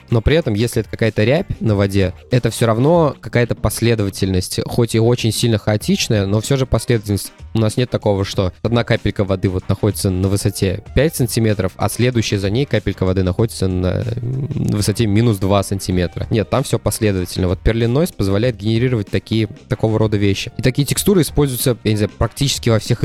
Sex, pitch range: male, 105-120 Hz